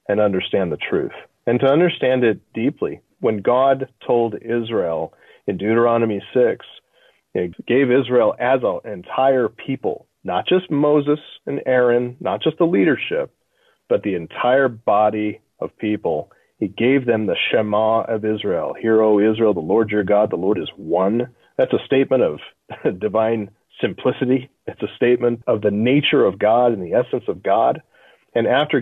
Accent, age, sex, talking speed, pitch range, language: American, 40-59, male, 160 wpm, 110-140 Hz, English